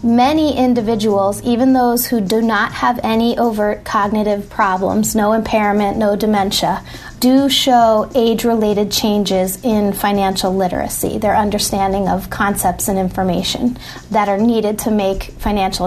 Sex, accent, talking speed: female, American, 130 wpm